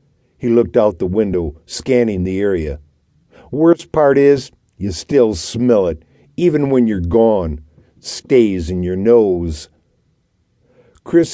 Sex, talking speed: male, 125 wpm